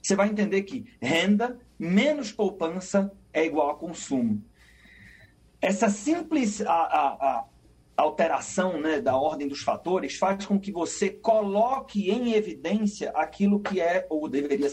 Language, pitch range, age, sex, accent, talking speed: Portuguese, 185-225 Hz, 40-59, male, Brazilian, 125 wpm